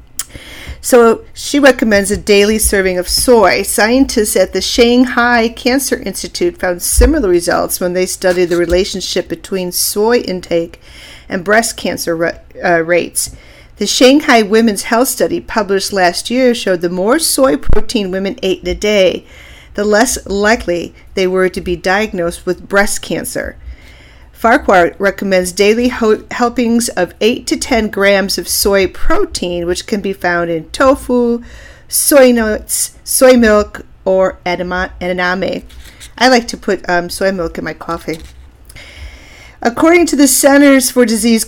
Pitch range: 180-235 Hz